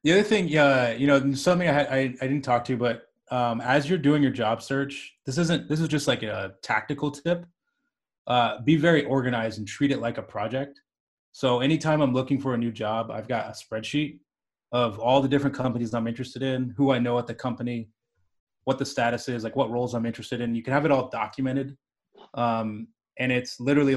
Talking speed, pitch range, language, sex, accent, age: 215 wpm, 115-140 Hz, English, male, American, 20-39